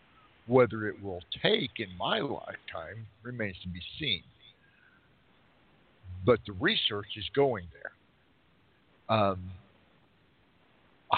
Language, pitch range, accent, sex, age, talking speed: English, 95-115 Hz, American, male, 60-79, 95 wpm